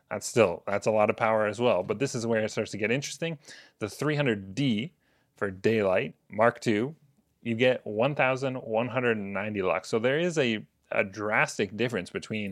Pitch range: 105-120 Hz